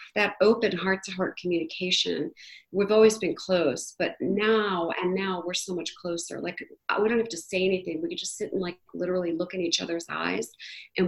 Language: English